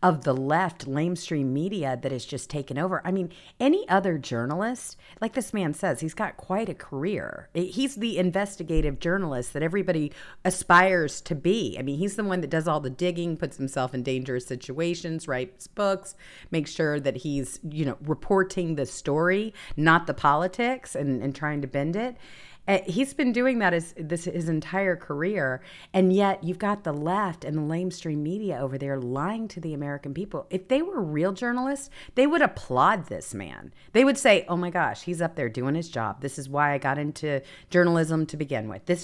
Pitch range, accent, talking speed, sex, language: 140-190 Hz, American, 195 wpm, female, English